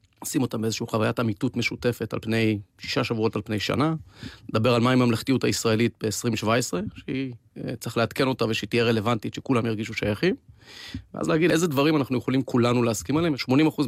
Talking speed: 160 wpm